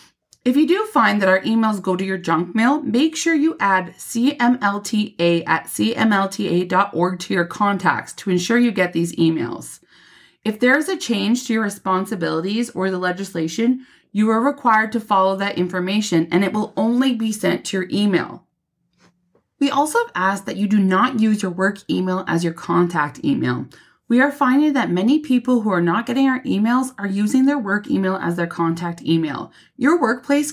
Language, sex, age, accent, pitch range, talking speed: English, female, 20-39, American, 175-240 Hz, 185 wpm